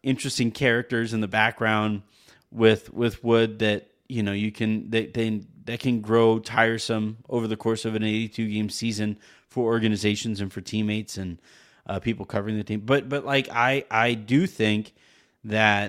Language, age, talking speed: English, 30-49, 170 wpm